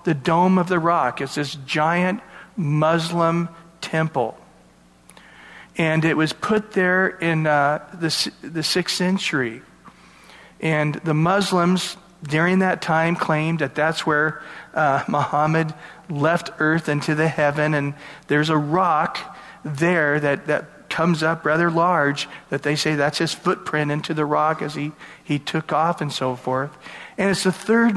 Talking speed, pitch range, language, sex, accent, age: 150 wpm, 145-185 Hz, English, male, American, 40-59